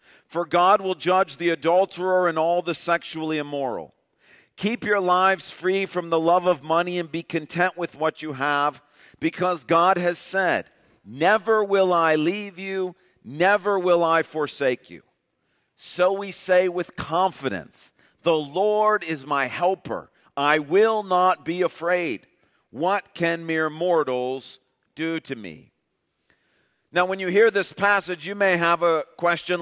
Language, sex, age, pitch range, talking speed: English, male, 50-69, 165-195 Hz, 150 wpm